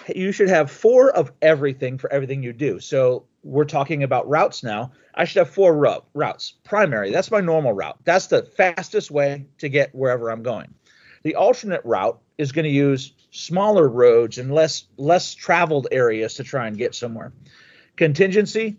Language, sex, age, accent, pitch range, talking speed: English, male, 40-59, American, 130-165 Hz, 175 wpm